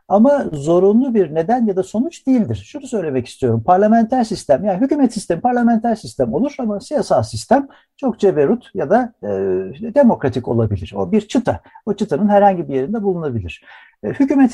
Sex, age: male, 60-79